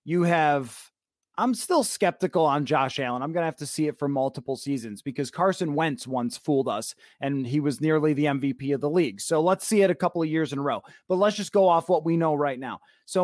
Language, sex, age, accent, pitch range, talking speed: English, male, 30-49, American, 145-190 Hz, 250 wpm